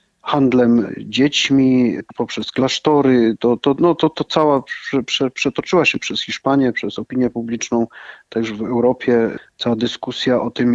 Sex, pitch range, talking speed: male, 115-140 Hz, 145 wpm